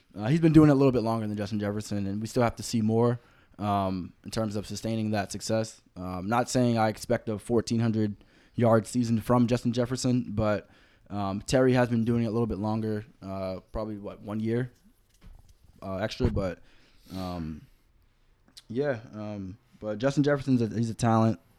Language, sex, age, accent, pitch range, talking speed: English, male, 20-39, American, 100-115 Hz, 190 wpm